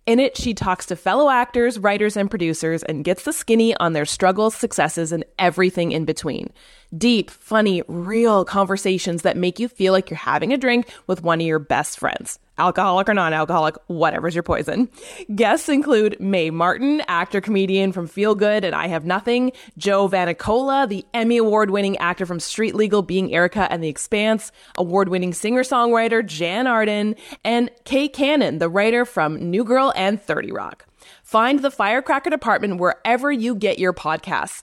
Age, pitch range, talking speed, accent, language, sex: 20-39, 180-235 Hz, 170 wpm, American, English, female